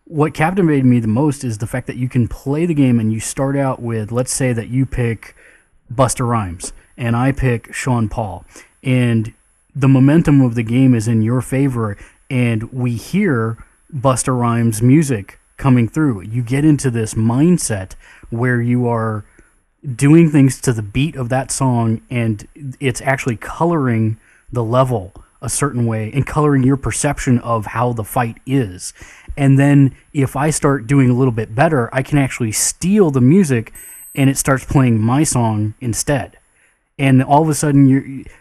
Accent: American